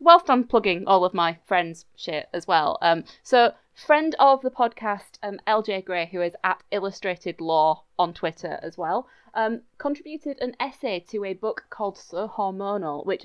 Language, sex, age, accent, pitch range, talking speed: English, female, 20-39, British, 180-225 Hz, 175 wpm